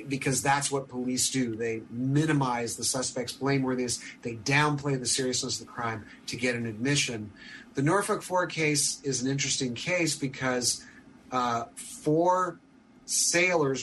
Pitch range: 125-155 Hz